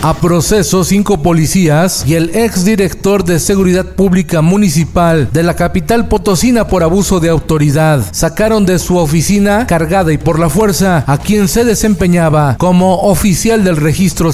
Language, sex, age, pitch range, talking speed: Spanish, male, 40-59, 160-190 Hz, 155 wpm